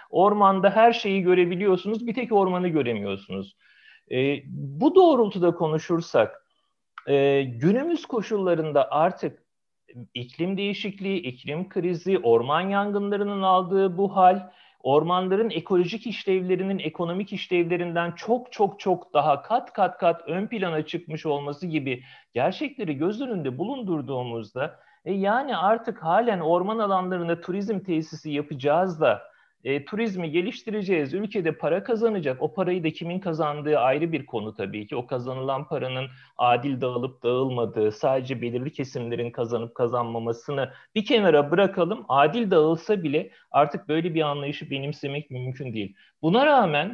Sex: male